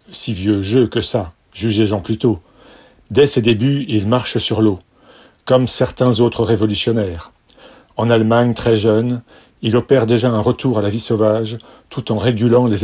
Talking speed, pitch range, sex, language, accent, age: 165 wpm, 110-125 Hz, male, French, French, 40-59